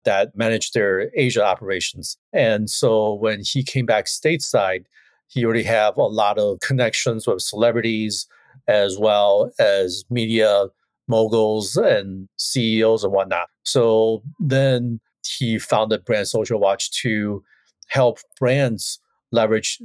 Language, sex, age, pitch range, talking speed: English, male, 40-59, 105-125 Hz, 125 wpm